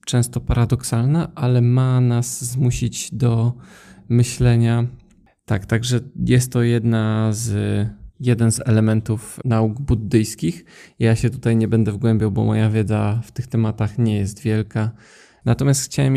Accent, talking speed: native, 135 wpm